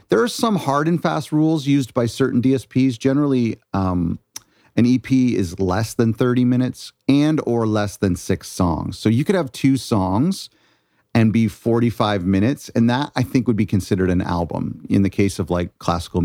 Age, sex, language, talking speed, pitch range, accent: 40-59, male, English, 185 wpm, 90-120 Hz, American